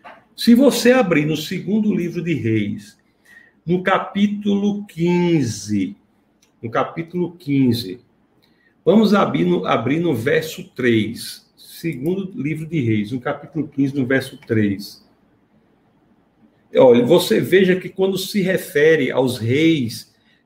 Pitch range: 135-185 Hz